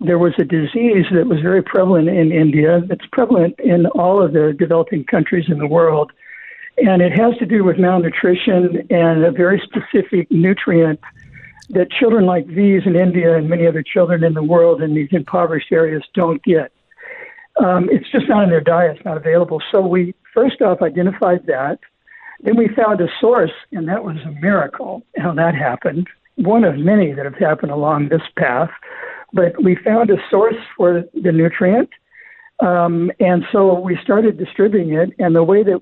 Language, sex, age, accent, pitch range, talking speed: English, male, 60-79, American, 165-205 Hz, 185 wpm